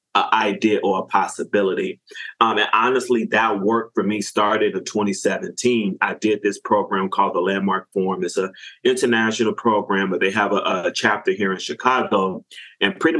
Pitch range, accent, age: 100-120 Hz, American, 20-39